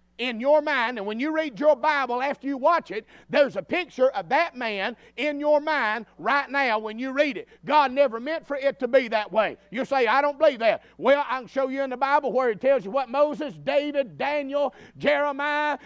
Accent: American